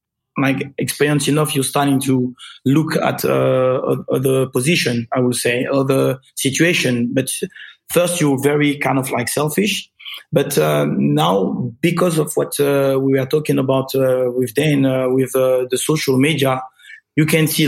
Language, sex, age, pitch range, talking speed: English, male, 20-39, 130-150 Hz, 165 wpm